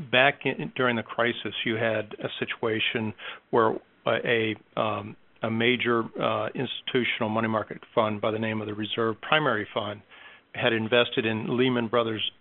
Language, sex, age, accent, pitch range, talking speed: English, male, 50-69, American, 110-125 Hz, 145 wpm